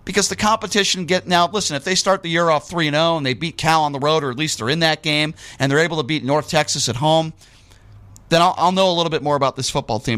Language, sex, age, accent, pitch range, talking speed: English, male, 40-59, American, 115-155 Hz, 290 wpm